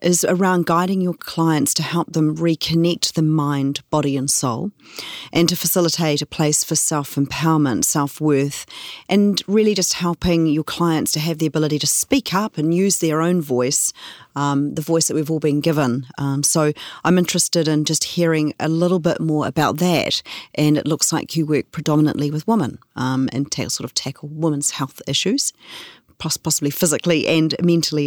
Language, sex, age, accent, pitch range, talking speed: English, female, 40-59, Australian, 150-175 Hz, 175 wpm